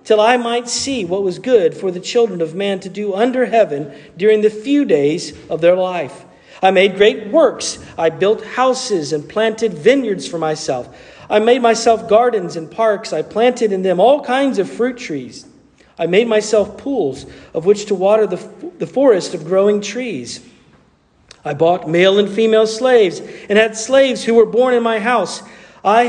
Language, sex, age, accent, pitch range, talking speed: English, male, 50-69, American, 185-240 Hz, 185 wpm